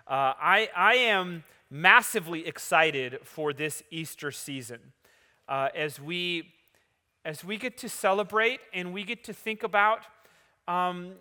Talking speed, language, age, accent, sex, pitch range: 135 wpm, English, 30-49, American, male, 160-200 Hz